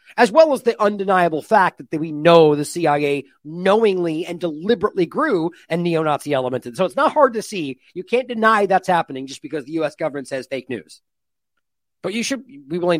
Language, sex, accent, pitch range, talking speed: English, male, American, 160-235 Hz, 195 wpm